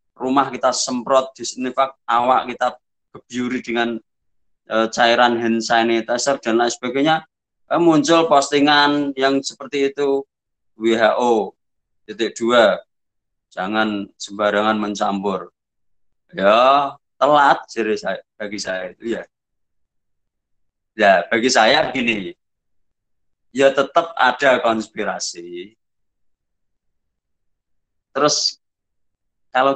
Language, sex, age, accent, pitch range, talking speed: Indonesian, male, 20-39, native, 100-135 Hz, 85 wpm